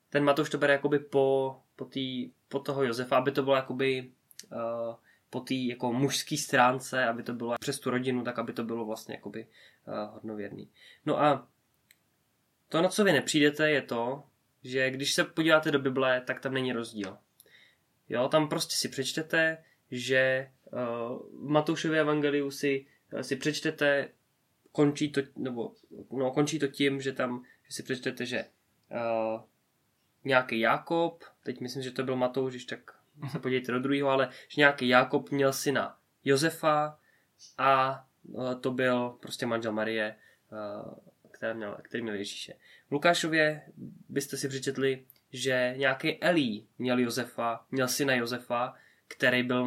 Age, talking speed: 20-39, 155 wpm